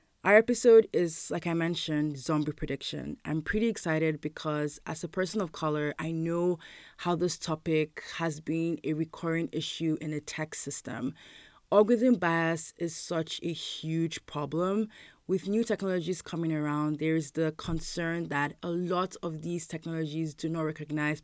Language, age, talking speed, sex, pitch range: English, 20-39, 160 wpm, female, 155-180 Hz